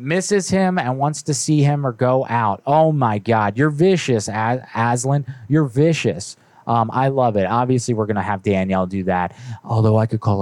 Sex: male